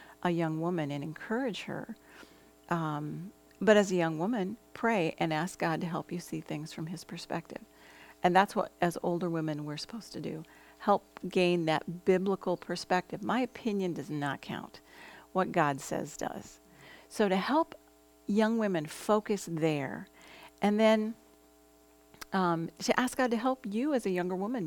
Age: 50-69